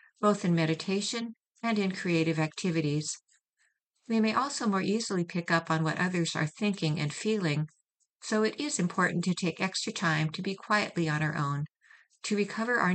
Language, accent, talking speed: English, American, 175 wpm